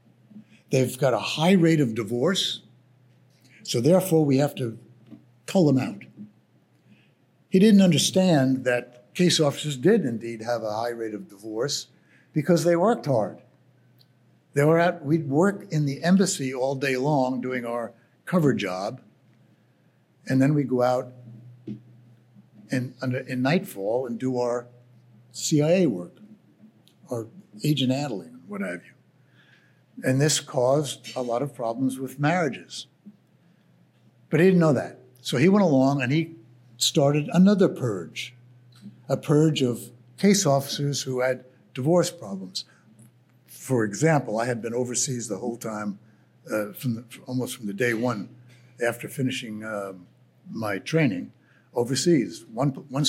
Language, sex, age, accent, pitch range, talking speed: English, male, 60-79, American, 120-145 Hz, 140 wpm